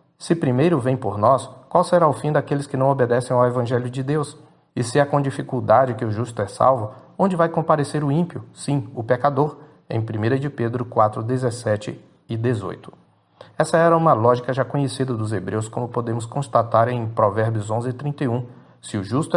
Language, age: Portuguese, 40-59